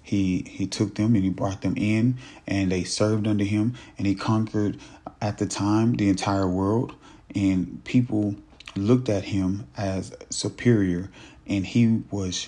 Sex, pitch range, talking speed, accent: male, 95-110 Hz, 160 wpm, American